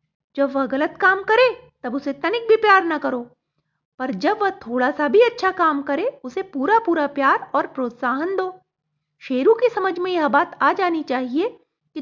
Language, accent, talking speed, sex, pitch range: Hindi, native, 190 wpm, female, 250-355 Hz